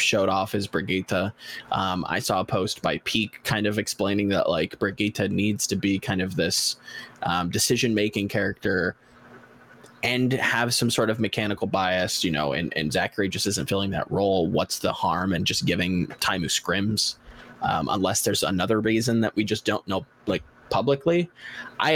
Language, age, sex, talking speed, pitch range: English, 20-39, male, 180 wpm, 95-120 Hz